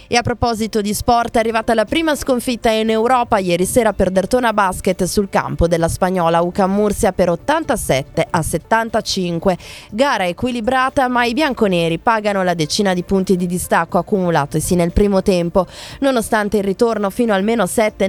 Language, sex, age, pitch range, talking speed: Italian, female, 20-39, 185-235 Hz, 165 wpm